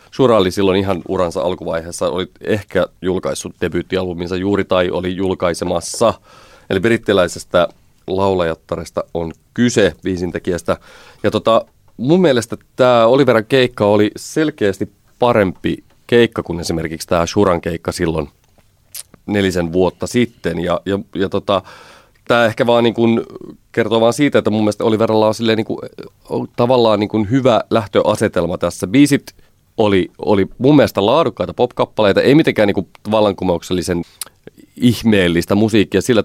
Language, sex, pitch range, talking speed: Finnish, male, 90-115 Hz, 130 wpm